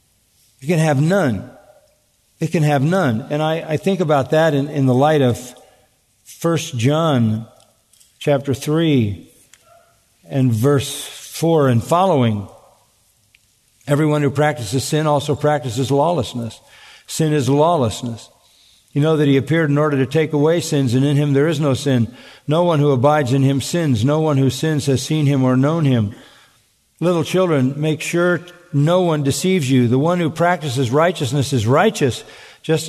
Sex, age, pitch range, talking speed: male, 50-69, 135-175 Hz, 160 wpm